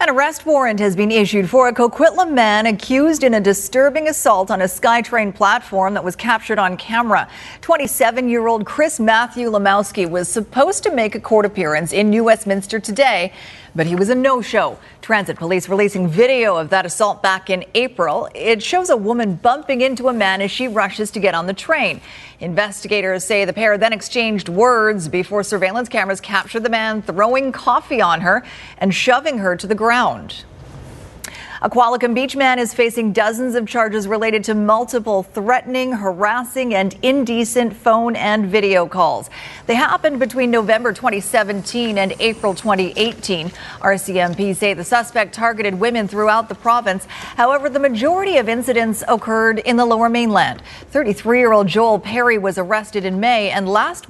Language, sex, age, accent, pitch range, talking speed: English, female, 40-59, American, 195-245 Hz, 165 wpm